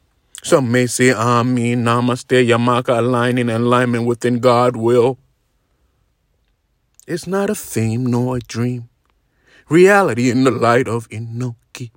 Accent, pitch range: American, 120-125 Hz